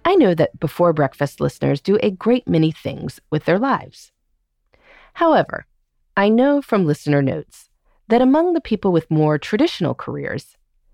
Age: 30-49